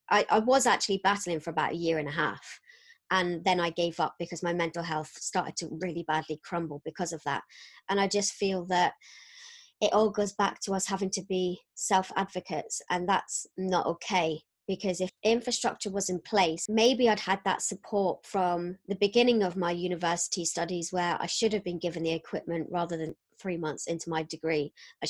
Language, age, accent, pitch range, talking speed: English, 20-39, British, 170-205 Hz, 195 wpm